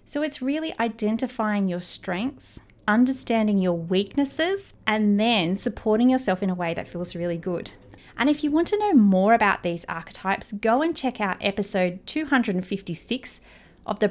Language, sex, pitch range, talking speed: English, female, 185-245 Hz, 160 wpm